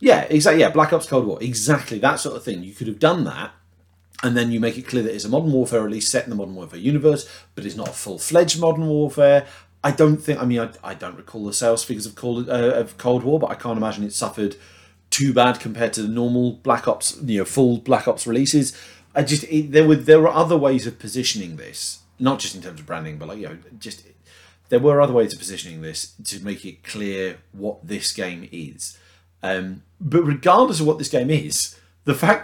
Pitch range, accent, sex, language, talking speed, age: 95-140 Hz, British, male, English, 230 wpm, 30-49